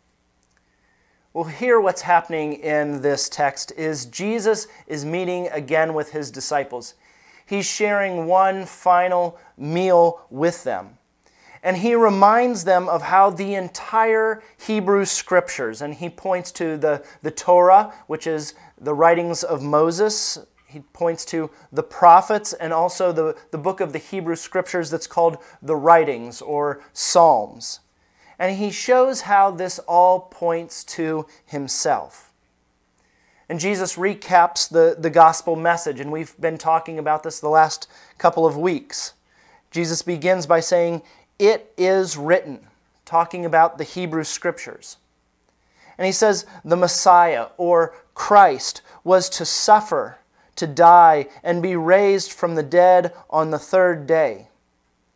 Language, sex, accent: English, male, American